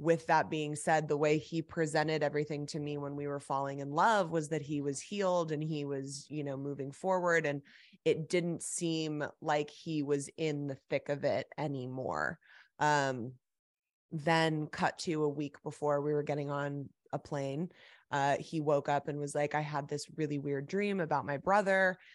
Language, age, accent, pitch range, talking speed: English, 20-39, American, 145-160 Hz, 190 wpm